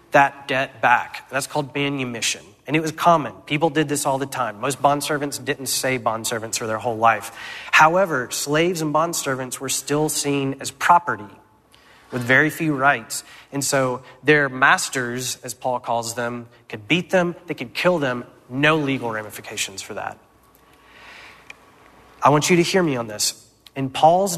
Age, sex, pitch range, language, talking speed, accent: 30-49, male, 125-165 Hz, English, 165 wpm, American